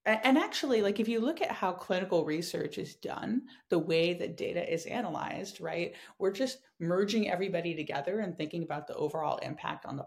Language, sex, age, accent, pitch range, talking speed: English, female, 30-49, American, 160-220 Hz, 190 wpm